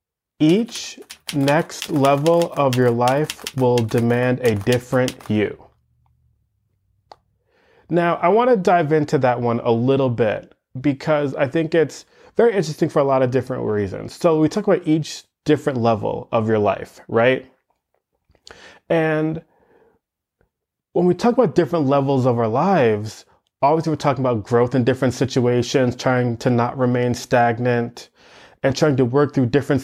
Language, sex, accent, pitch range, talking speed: English, male, American, 125-160 Hz, 145 wpm